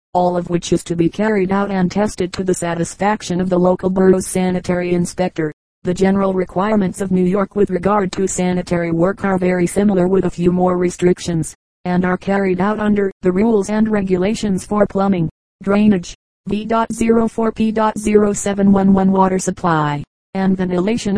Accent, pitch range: American, 180-195 Hz